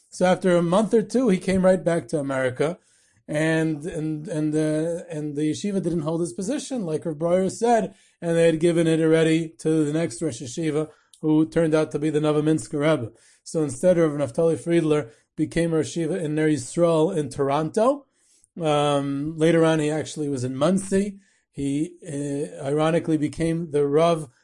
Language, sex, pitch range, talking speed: English, male, 150-180 Hz, 175 wpm